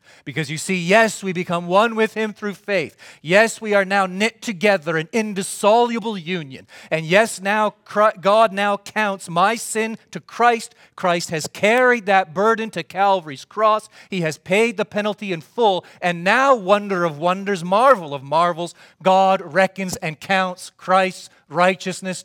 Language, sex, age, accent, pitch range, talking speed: English, male, 40-59, American, 135-195 Hz, 160 wpm